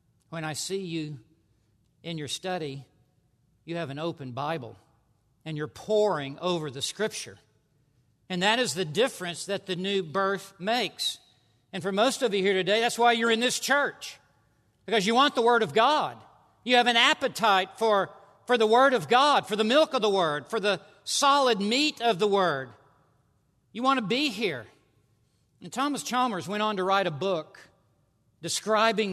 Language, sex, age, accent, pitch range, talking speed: English, male, 50-69, American, 145-230 Hz, 175 wpm